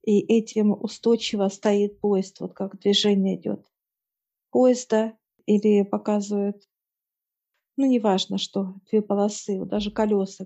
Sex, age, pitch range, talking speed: female, 50-69, 195-215 Hz, 115 wpm